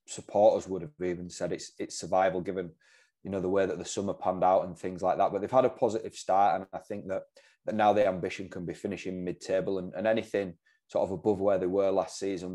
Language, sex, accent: English, male, British